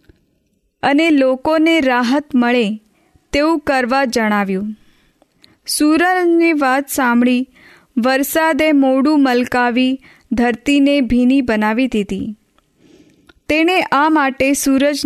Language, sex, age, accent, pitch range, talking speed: Hindi, female, 20-39, native, 235-290 Hz, 70 wpm